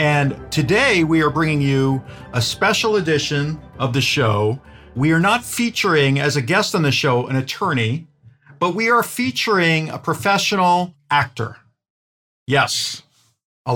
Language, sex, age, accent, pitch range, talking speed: English, male, 50-69, American, 120-160 Hz, 145 wpm